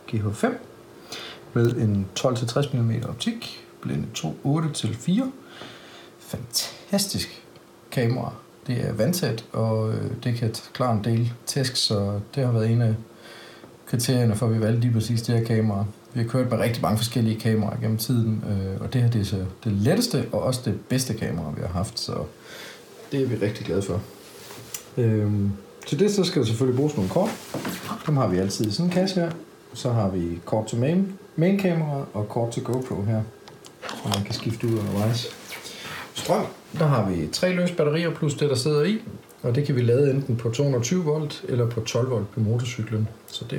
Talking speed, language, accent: 185 wpm, Danish, native